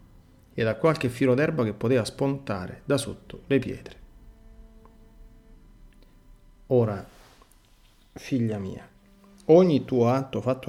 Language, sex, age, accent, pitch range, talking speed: Italian, male, 40-59, native, 110-140 Hz, 105 wpm